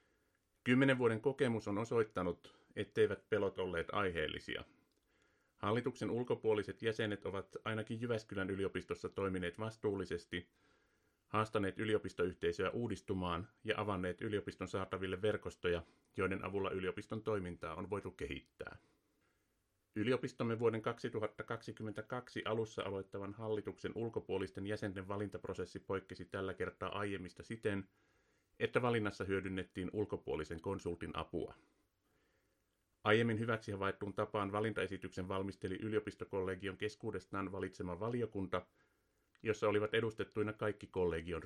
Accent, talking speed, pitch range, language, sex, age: native, 100 wpm, 95-110 Hz, Finnish, male, 30-49